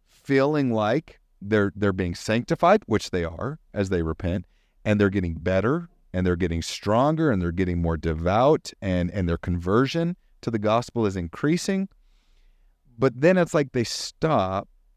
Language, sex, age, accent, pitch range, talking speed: English, male, 40-59, American, 90-125 Hz, 160 wpm